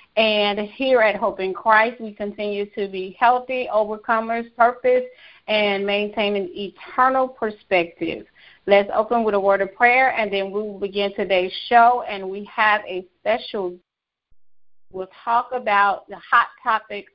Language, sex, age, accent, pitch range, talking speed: English, female, 30-49, American, 200-240 Hz, 150 wpm